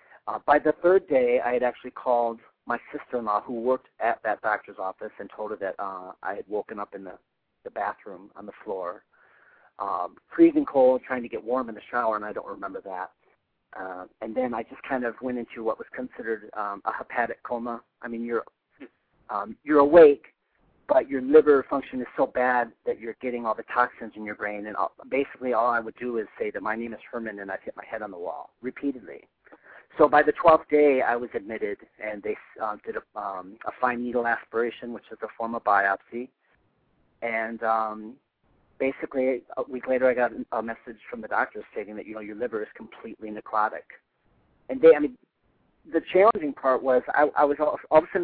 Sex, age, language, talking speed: male, 40-59, English, 210 wpm